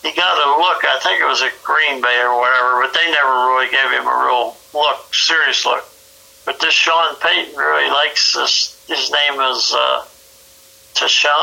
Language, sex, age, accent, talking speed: English, male, 60-79, American, 185 wpm